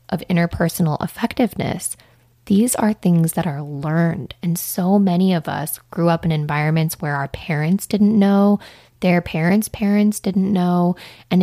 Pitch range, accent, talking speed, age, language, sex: 155-190 Hz, American, 150 wpm, 20-39, English, female